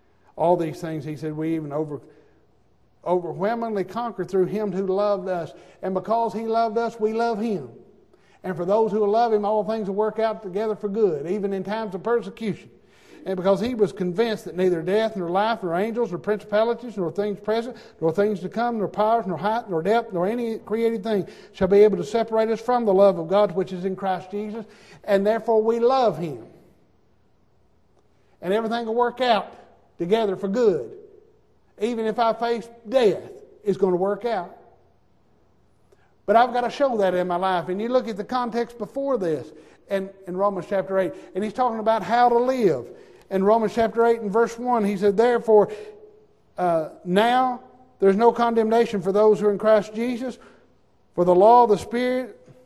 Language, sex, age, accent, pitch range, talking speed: English, male, 60-79, American, 190-230 Hz, 190 wpm